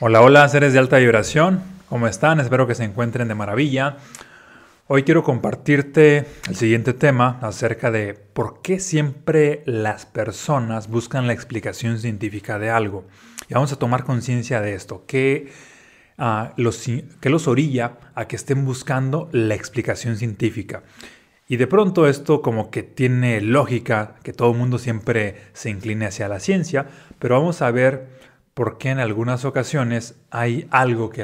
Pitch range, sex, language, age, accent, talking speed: 110-135 Hz, male, Spanish, 30-49, Mexican, 160 wpm